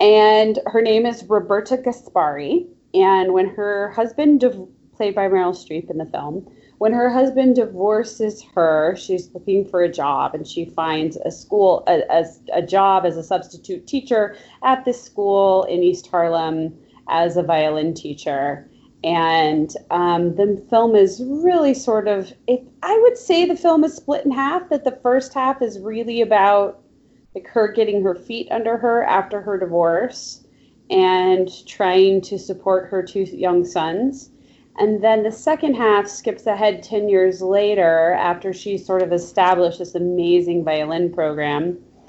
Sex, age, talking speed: female, 30-49, 160 wpm